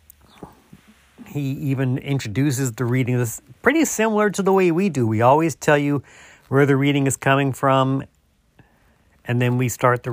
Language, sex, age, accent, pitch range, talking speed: English, male, 50-69, American, 120-165 Hz, 165 wpm